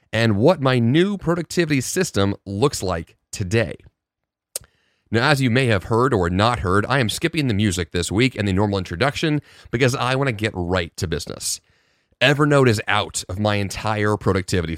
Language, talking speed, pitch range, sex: English, 180 wpm, 95-140 Hz, male